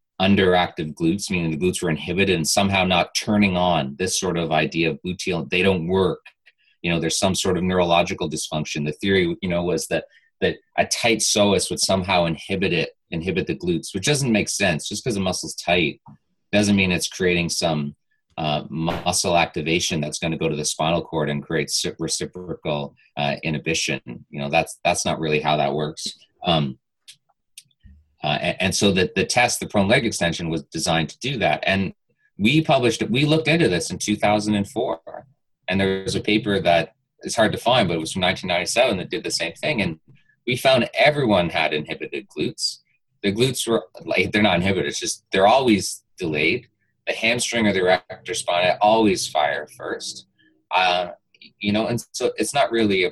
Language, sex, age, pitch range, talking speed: English, male, 30-49, 85-105 Hz, 190 wpm